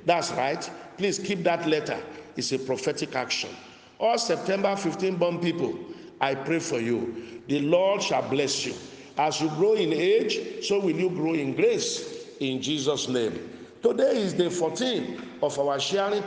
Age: 50-69